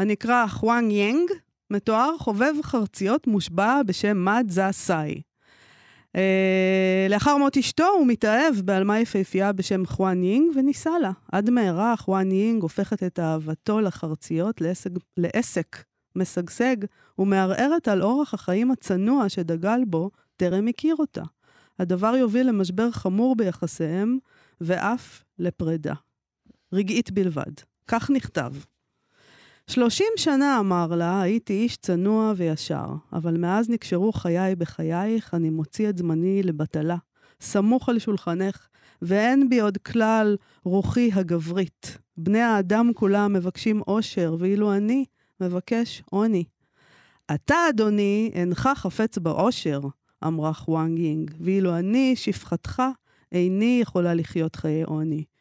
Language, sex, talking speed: Hebrew, female, 115 wpm